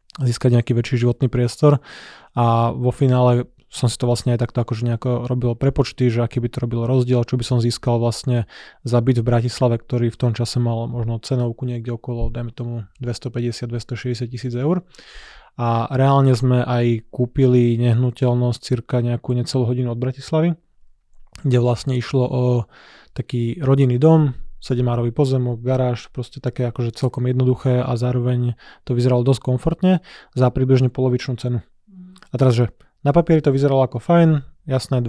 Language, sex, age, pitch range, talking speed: Slovak, male, 20-39, 120-130 Hz, 160 wpm